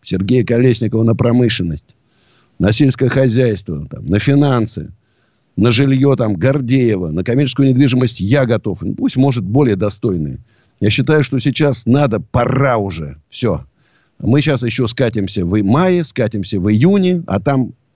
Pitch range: 110-160 Hz